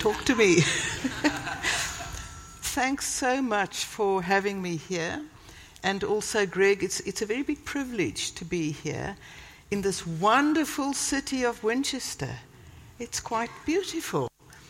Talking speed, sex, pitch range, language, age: 125 wpm, female, 180-240 Hz, English, 60-79